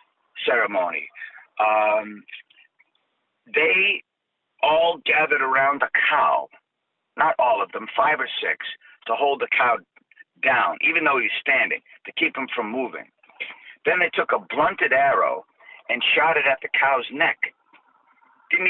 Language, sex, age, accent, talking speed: English, male, 50-69, American, 140 wpm